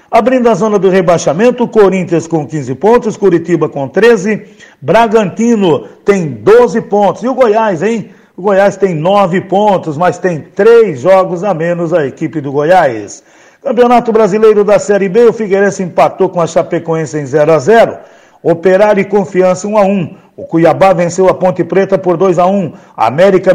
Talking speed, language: 165 wpm, Portuguese